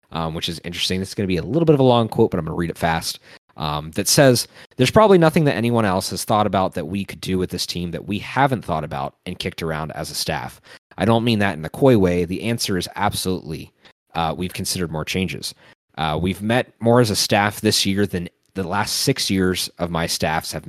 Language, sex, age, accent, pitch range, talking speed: English, male, 30-49, American, 90-115 Hz, 250 wpm